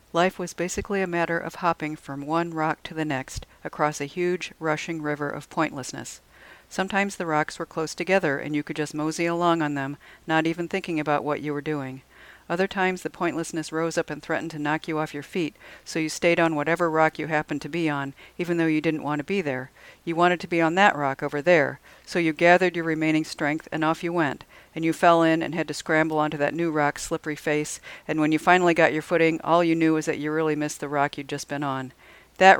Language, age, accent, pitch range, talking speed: English, 50-69, American, 145-170 Hz, 240 wpm